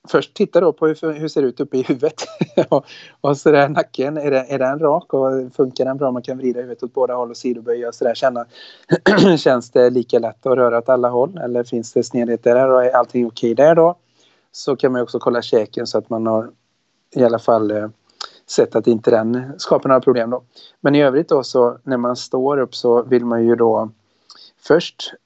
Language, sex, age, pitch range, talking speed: Swedish, male, 30-49, 115-130 Hz, 230 wpm